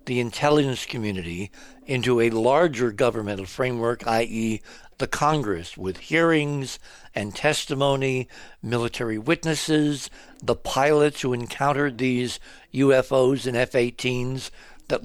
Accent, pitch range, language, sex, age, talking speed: American, 115-145 Hz, English, male, 60-79, 110 wpm